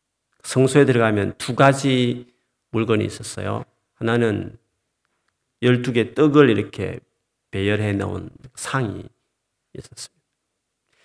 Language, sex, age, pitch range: Korean, male, 40-59, 110-165 Hz